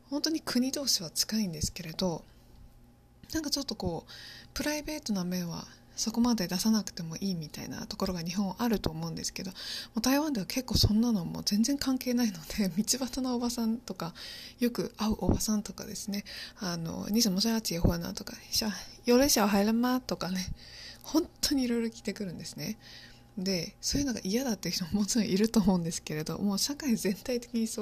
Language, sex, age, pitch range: Japanese, female, 20-39, 180-240 Hz